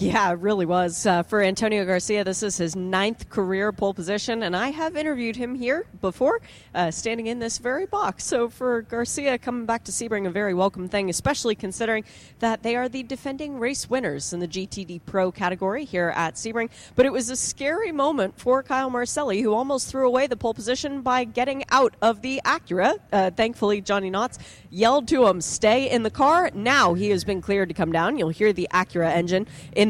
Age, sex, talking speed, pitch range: 30-49, female, 205 wpm, 185-260 Hz